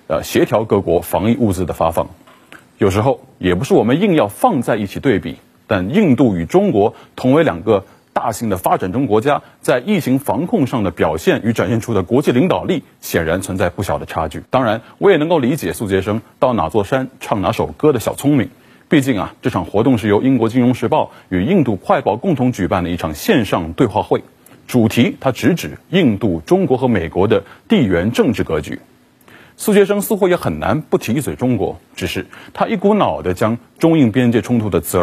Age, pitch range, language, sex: 30-49, 95-135 Hz, Chinese, male